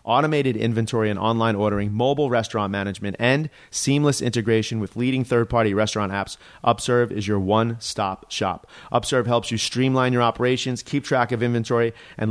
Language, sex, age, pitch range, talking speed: English, male, 30-49, 105-130 Hz, 155 wpm